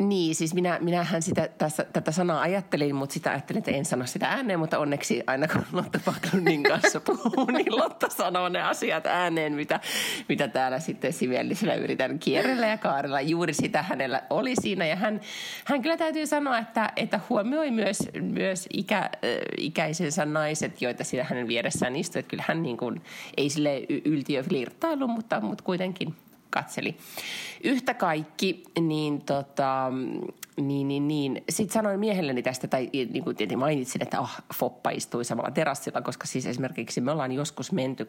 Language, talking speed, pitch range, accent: Finnish, 165 wpm, 140-200 Hz, native